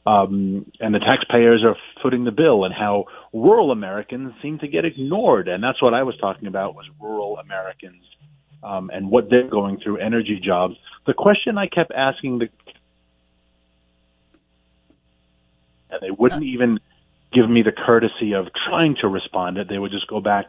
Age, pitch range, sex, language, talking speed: 40-59, 95-120 Hz, male, English, 170 wpm